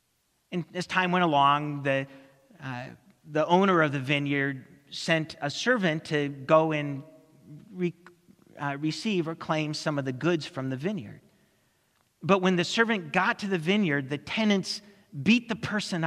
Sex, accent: male, American